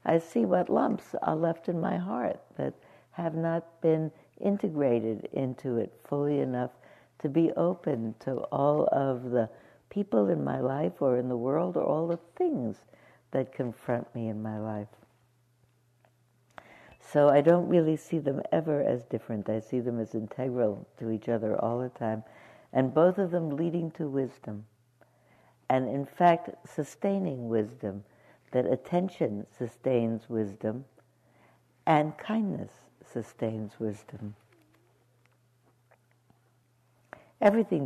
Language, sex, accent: English, female, American